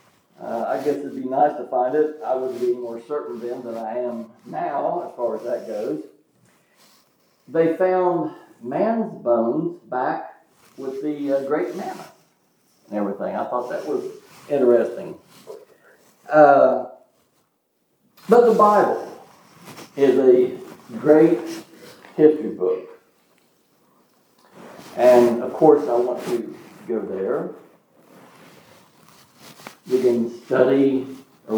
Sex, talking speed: male, 120 wpm